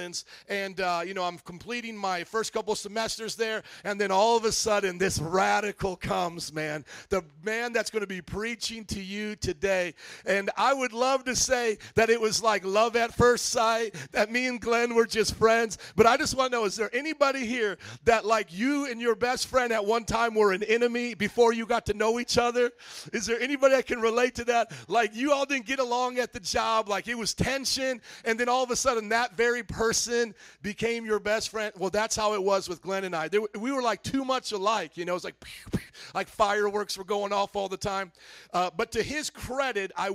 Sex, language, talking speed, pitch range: male, English, 225 wpm, 190-235 Hz